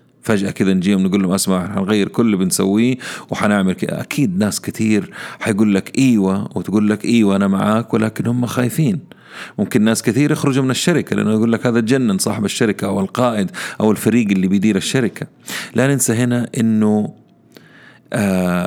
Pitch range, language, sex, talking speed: 95-115 Hz, Arabic, male, 165 wpm